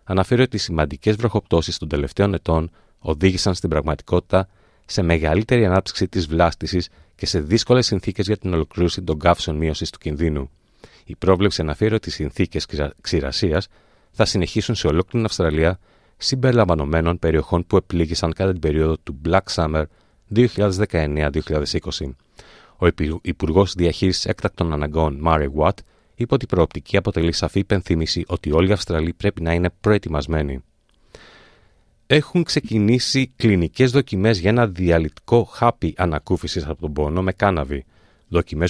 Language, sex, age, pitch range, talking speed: Greek, male, 30-49, 80-105 Hz, 135 wpm